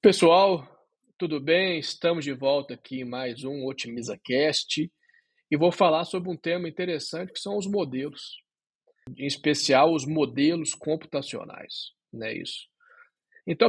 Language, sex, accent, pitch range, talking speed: Portuguese, male, Brazilian, 150-200 Hz, 140 wpm